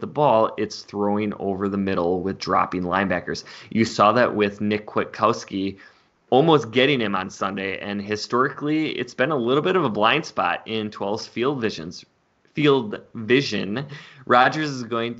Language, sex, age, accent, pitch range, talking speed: English, male, 20-39, American, 95-115 Hz, 160 wpm